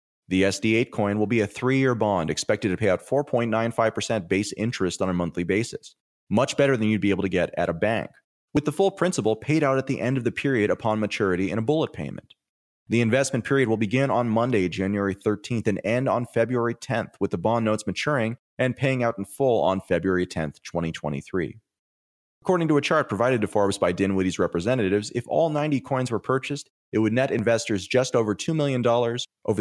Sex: male